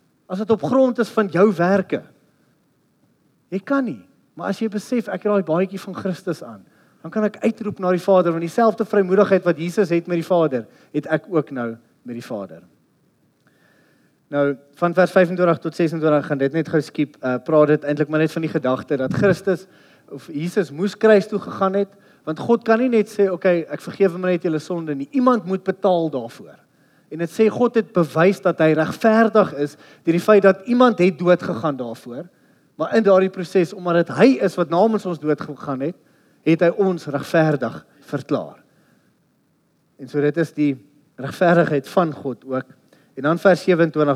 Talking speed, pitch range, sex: 190 wpm, 150-195 Hz, male